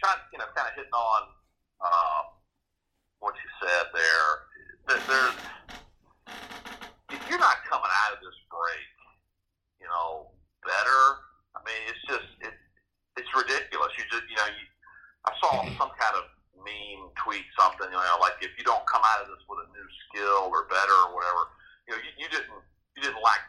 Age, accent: 40-59, American